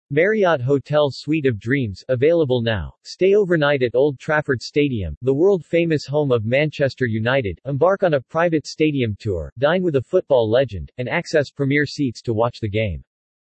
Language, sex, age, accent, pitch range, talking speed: English, male, 40-59, American, 120-150 Hz, 170 wpm